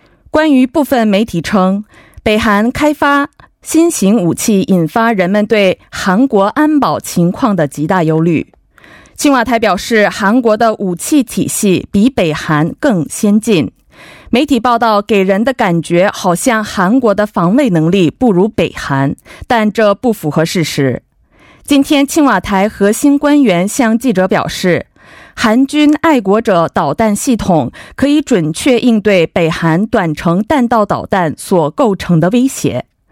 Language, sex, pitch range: Korean, female, 180-260 Hz